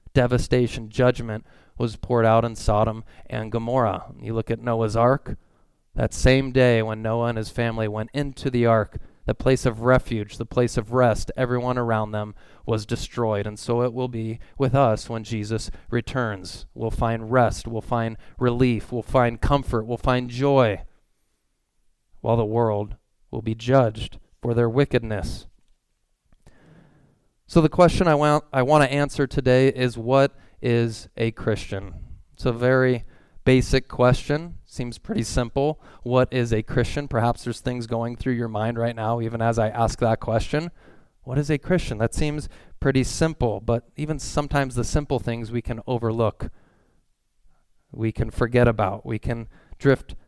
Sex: male